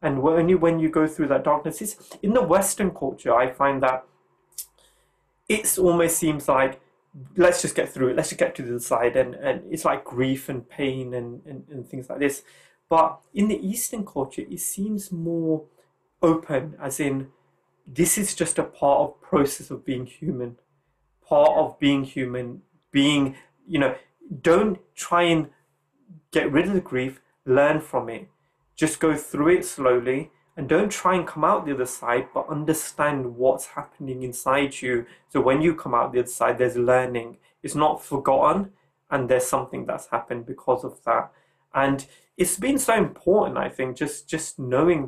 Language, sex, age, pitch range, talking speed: English, male, 30-49, 130-175 Hz, 180 wpm